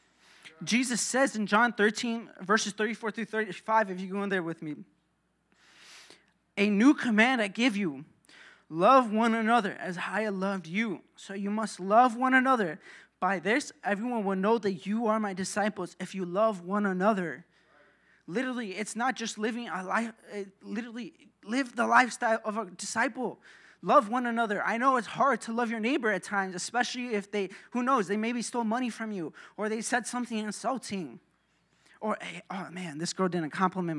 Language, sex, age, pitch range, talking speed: English, male, 20-39, 195-235 Hz, 180 wpm